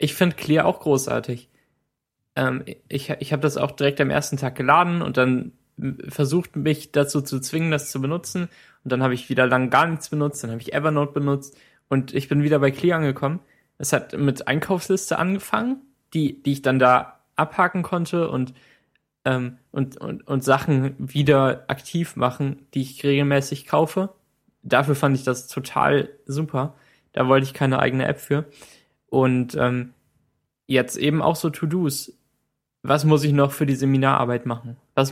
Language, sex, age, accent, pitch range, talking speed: German, male, 20-39, German, 130-150 Hz, 175 wpm